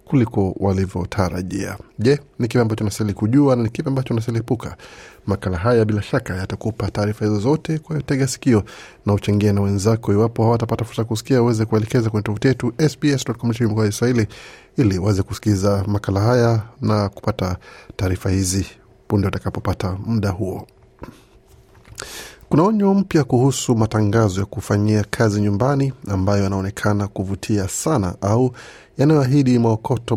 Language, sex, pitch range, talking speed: Swahili, male, 100-125 Hz, 130 wpm